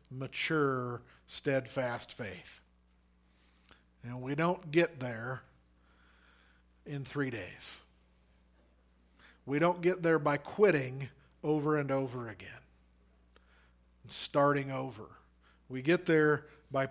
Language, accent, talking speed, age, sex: English, American, 95 wpm, 50-69, male